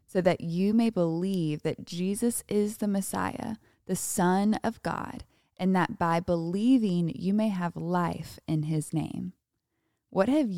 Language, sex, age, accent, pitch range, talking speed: English, female, 20-39, American, 165-210 Hz, 155 wpm